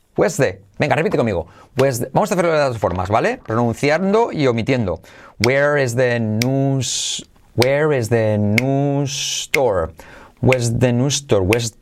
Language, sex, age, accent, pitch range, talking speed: Spanish, male, 30-49, Spanish, 110-175 Hz, 70 wpm